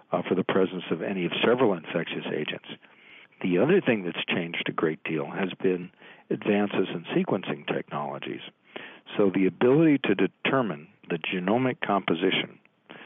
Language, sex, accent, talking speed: English, male, American, 145 wpm